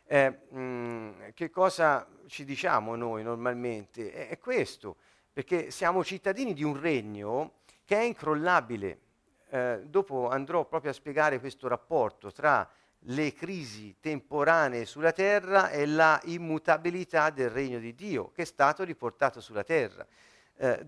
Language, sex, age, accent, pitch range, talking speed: Italian, male, 50-69, native, 135-205 Hz, 135 wpm